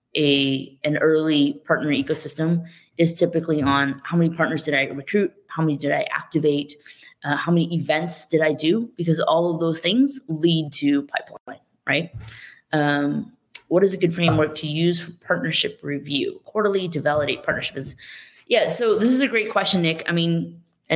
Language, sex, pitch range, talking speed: English, female, 150-175 Hz, 175 wpm